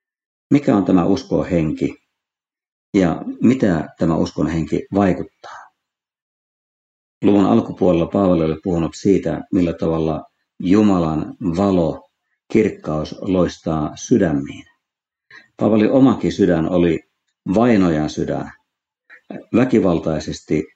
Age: 50-69